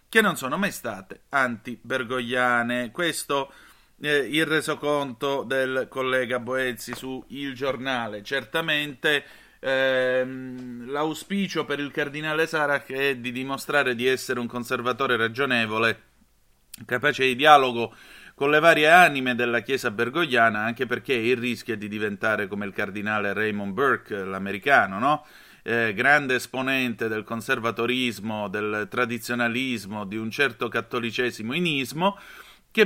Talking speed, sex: 125 wpm, male